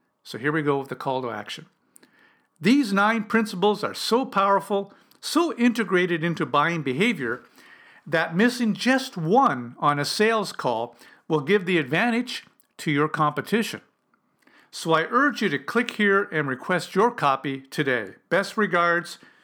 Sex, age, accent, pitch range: male, 50-69, American, 150-215 Hz